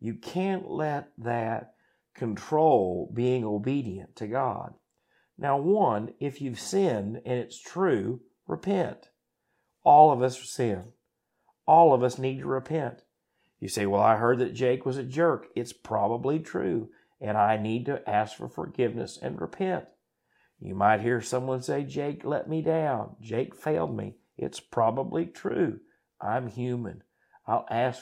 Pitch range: 105-130 Hz